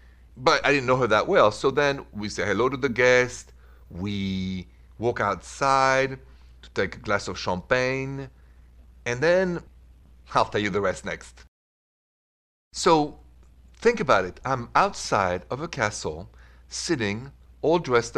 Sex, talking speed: male, 145 wpm